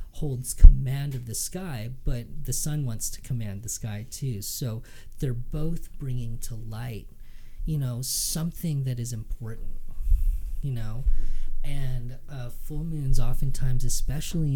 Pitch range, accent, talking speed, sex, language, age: 115-140 Hz, American, 140 wpm, male, English, 40-59